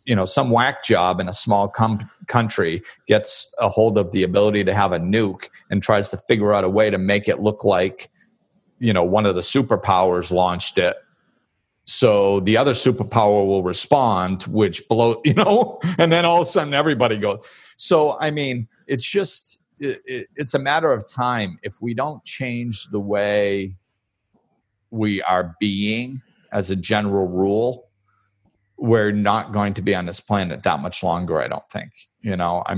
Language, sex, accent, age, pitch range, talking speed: English, male, American, 40-59, 95-120 Hz, 180 wpm